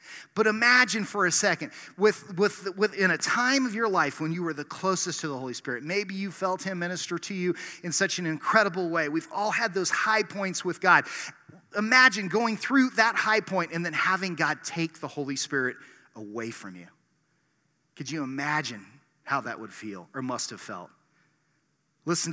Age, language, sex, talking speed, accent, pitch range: 30-49, English, male, 190 wpm, American, 150-200 Hz